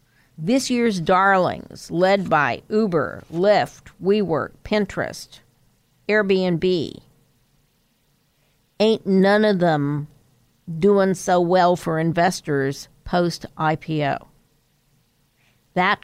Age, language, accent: 50-69, English, American